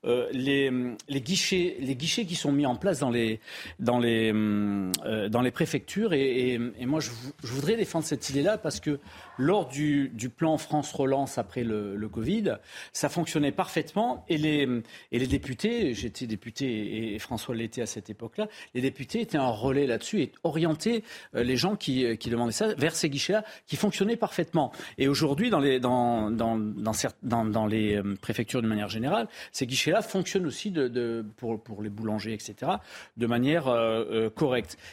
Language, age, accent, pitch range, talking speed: French, 40-59, French, 110-150 Hz, 190 wpm